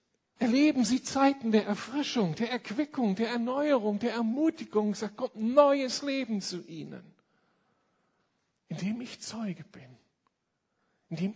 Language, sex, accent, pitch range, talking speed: German, male, German, 175-230 Hz, 115 wpm